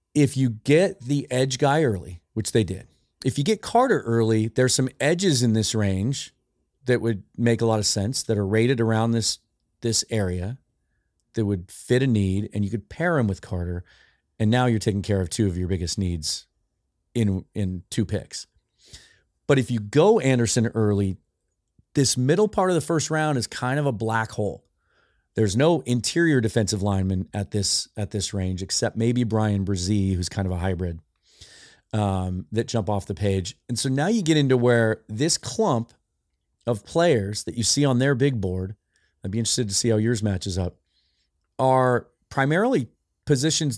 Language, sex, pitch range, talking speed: English, male, 100-130 Hz, 185 wpm